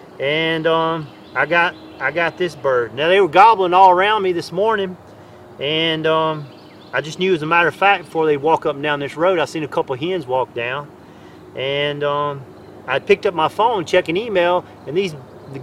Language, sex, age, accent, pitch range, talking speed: English, male, 40-59, American, 145-180 Hz, 215 wpm